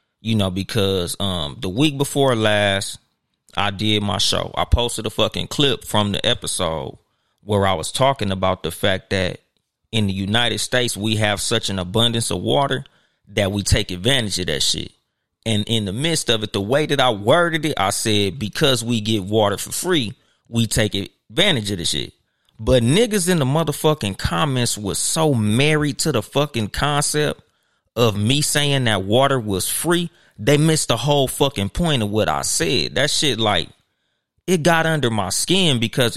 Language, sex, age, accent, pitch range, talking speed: English, male, 30-49, American, 105-140 Hz, 185 wpm